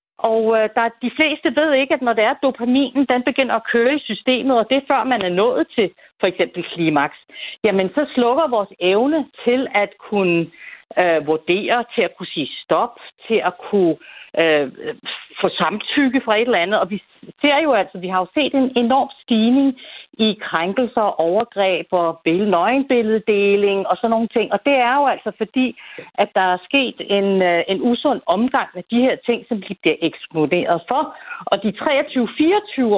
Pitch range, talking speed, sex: 200-270 Hz, 180 wpm, female